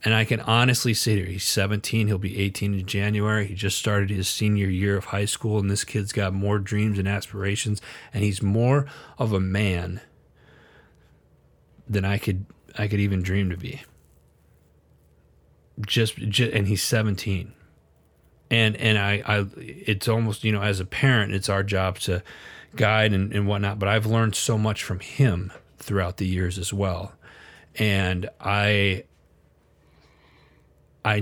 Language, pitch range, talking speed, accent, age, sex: English, 90-110 Hz, 160 wpm, American, 30-49, male